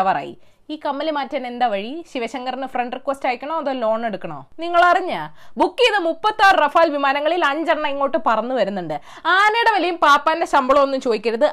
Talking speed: 150 wpm